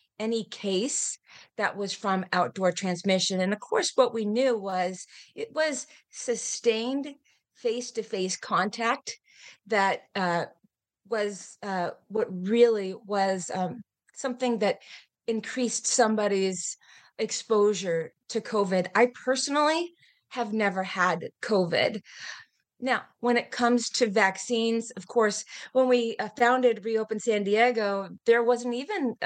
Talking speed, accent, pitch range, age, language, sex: 115 wpm, American, 195-245 Hz, 30-49, English, female